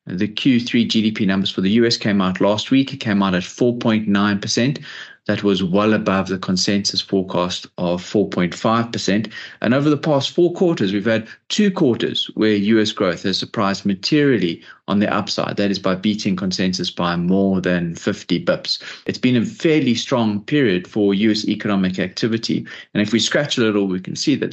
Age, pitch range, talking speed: 30-49, 95-115 Hz, 180 wpm